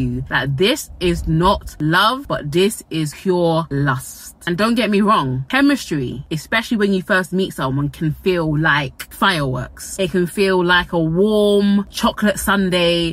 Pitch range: 155-200 Hz